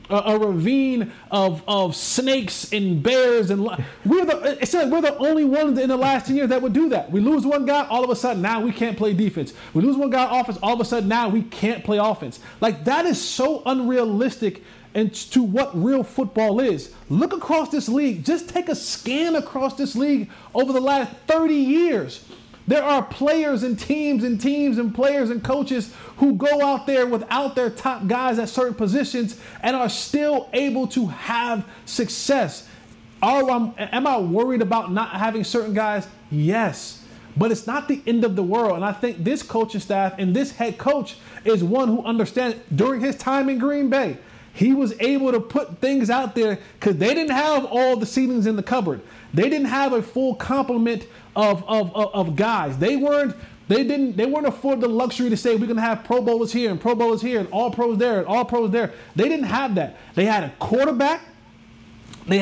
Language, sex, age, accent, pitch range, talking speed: English, male, 30-49, American, 220-270 Hz, 210 wpm